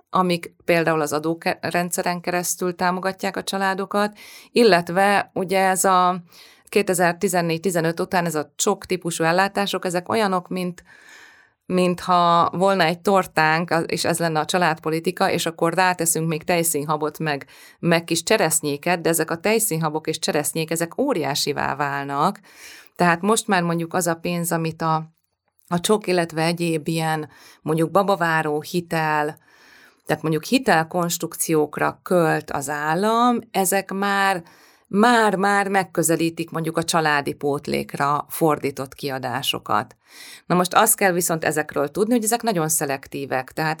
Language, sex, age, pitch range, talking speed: English, female, 30-49, 155-185 Hz, 130 wpm